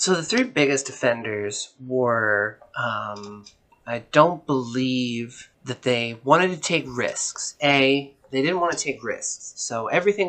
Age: 30-49